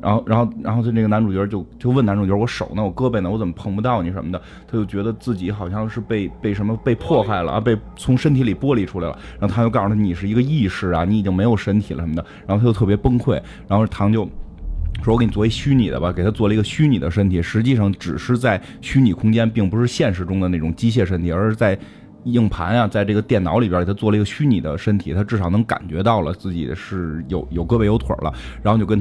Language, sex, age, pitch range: Chinese, male, 20-39, 95-120 Hz